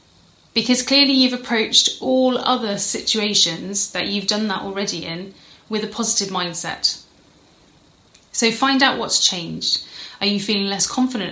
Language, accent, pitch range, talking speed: English, British, 190-235 Hz, 145 wpm